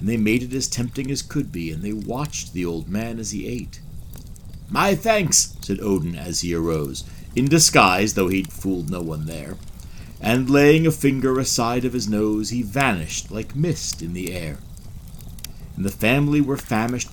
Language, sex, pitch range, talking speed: English, male, 95-155 Hz, 185 wpm